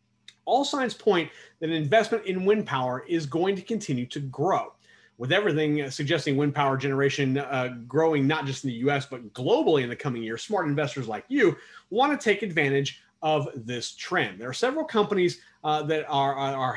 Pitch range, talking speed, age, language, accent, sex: 130-165 Hz, 190 wpm, 30-49, English, American, male